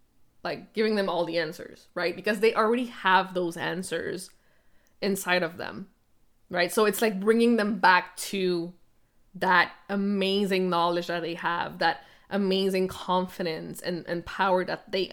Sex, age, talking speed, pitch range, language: female, 20-39, 150 wpm, 175-205 Hz, English